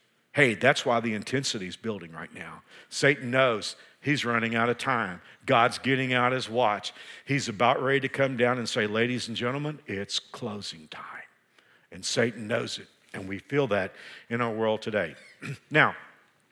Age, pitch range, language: 50-69, 115-140 Hz, English